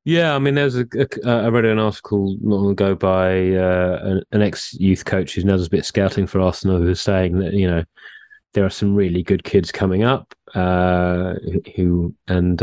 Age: 30-49